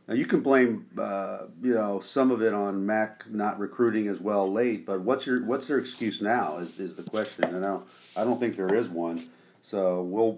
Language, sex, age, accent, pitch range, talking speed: English, male, 50-69, American, 100-120 Hz, 225 wpm